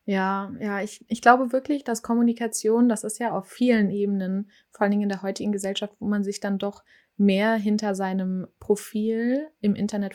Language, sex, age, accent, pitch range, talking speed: German, female, 20-39, German, 190-215 Hz, 190 wpm